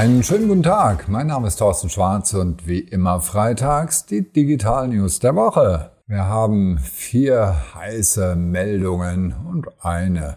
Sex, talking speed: male, 145 wpm